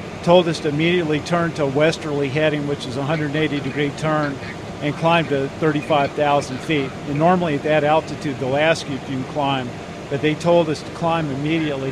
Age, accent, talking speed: 50-69, American, 190 wpm